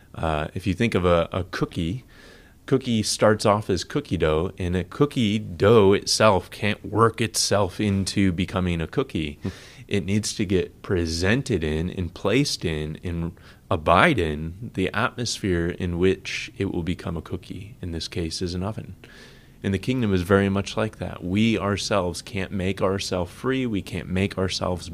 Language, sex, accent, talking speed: English, male, American, 170 wpm